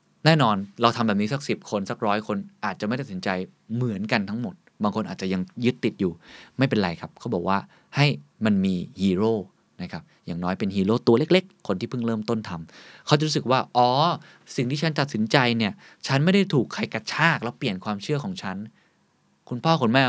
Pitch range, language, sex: 100-135 Hz, Thai, male